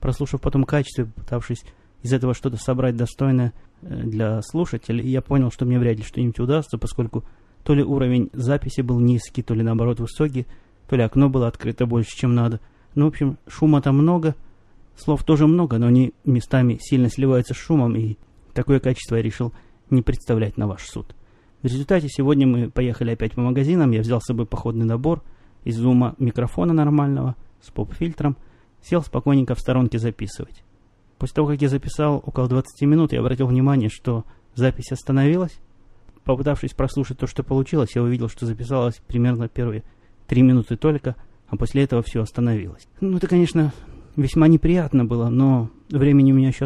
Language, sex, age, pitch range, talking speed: Russian, male, 20-39, 115-140 Hz, 170 wpm